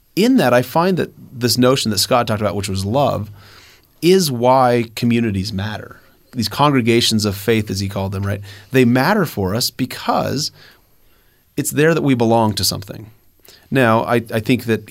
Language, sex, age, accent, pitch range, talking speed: English, male, 30-49, American, 100-120 Hz, 175 wpm